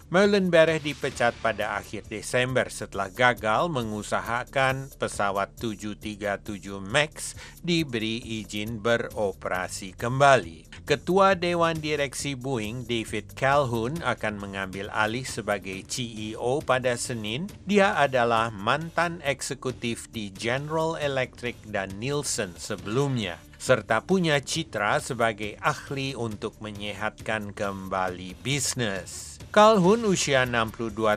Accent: native